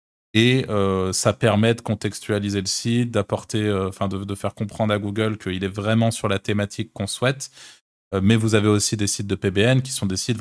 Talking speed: 215 wpm